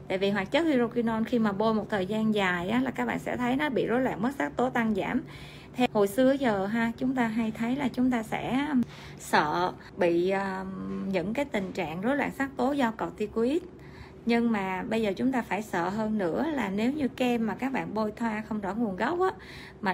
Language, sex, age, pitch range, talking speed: Vietnamese, female, 20-39, 195-240 Hz, 230 wpm